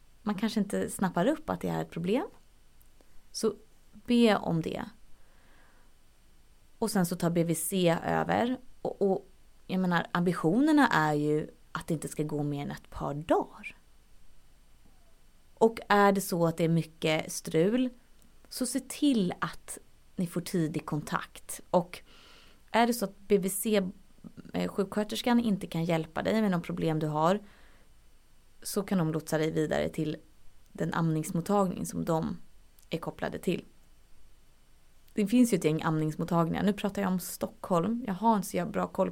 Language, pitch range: Swedish, 155-205 Hz